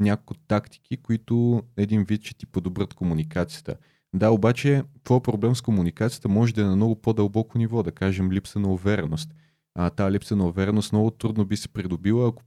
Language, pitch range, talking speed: Bulgarian, 85-115 Hz, 185 wpm